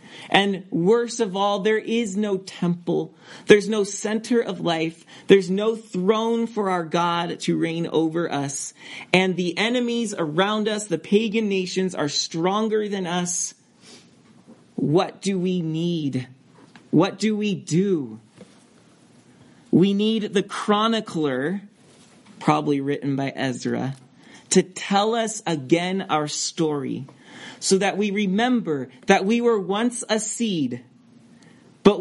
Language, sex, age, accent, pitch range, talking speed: English, male, 40-59, American, 165-225 Hz, 125 wpm